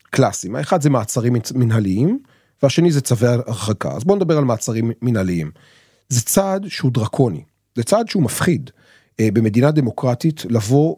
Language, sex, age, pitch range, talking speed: Hebrew, male, 30-49, 110-150 Hz, 140 wpm